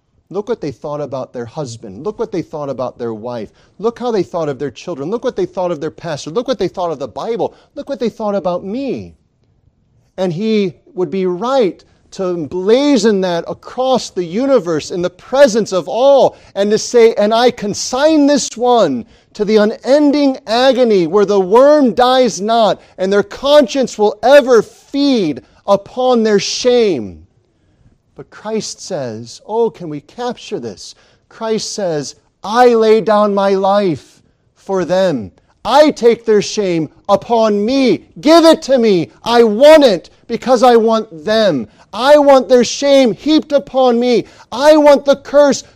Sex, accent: male, American